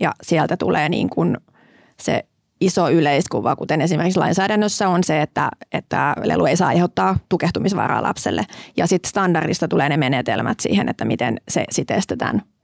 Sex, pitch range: female, 165-190 Hz